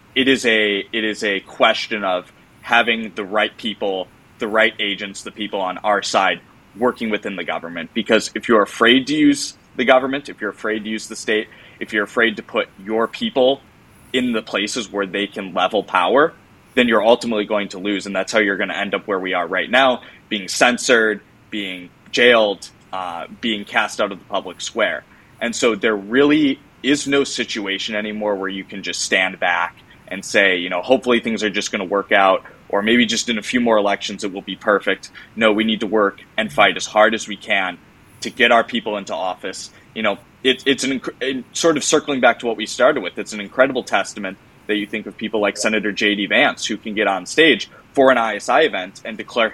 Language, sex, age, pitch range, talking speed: English, male, 20-39, 100-120 Hz, 215 wpm